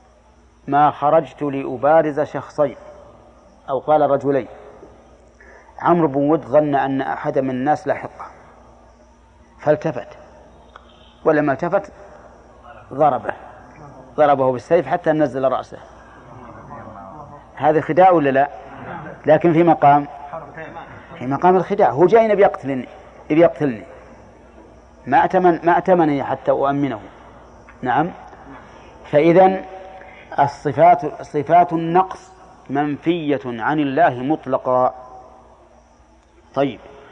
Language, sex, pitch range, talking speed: Arabic, male, 135-165 Hz, 90 wpm